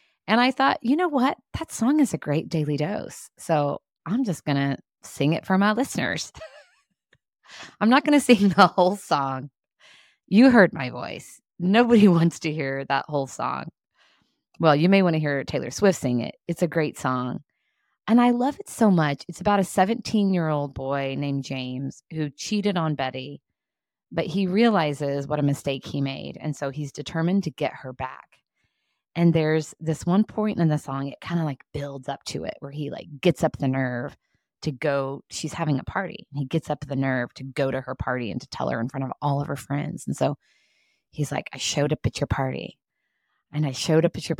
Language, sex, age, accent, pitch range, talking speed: English, female, 20-39, American, 140-205 Hz, 210 wpm